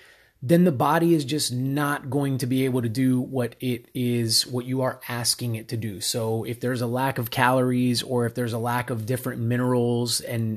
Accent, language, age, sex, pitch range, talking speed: American, English, 30-49, male, 120-155 Hz, 215 wpm